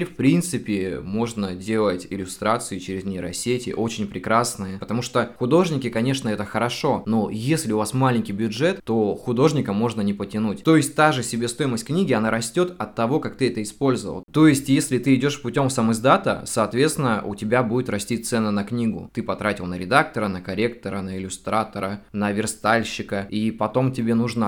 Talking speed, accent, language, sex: 170 wpm, native, Russian, male